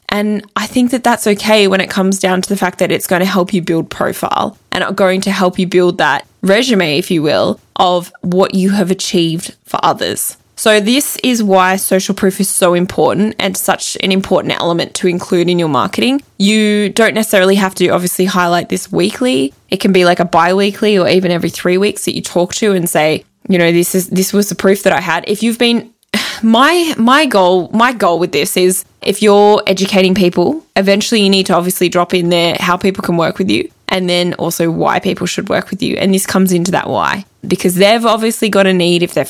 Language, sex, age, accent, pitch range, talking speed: English, female, 10-29, Australian, 175-210 Hz, 225 wpm